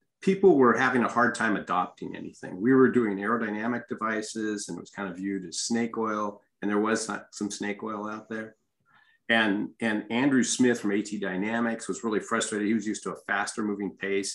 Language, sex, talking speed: English, male, 205 wpm